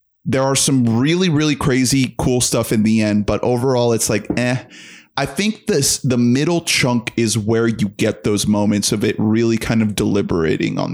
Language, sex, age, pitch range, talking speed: English, male, 20-39, 110-135 Hz, 190 wpm